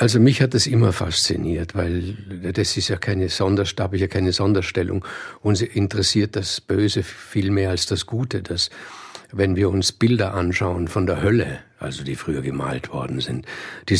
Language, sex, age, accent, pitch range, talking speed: German, male, 50-69, German, 95-110 Hz, 175 wpm